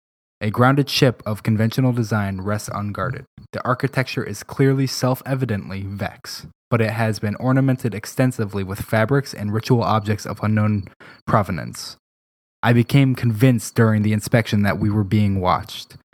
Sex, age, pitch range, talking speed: male, 20-39, 105-125 Hz, 145 wpm